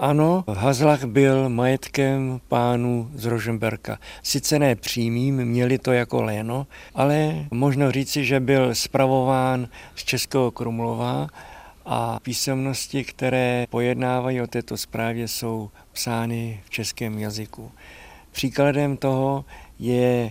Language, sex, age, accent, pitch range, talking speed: Czech, male, 50-69, native, 115-135 Hz, 110 wpm